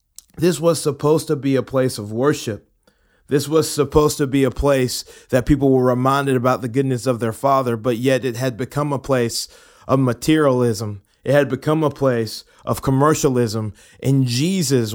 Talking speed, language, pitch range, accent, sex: 175 wpm, English, 115-145 Hz, American, male